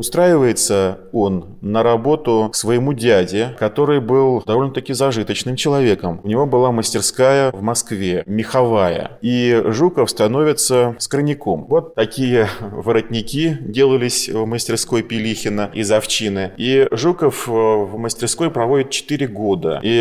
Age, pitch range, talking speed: 20-39, 100-125 Hz, 120 wpm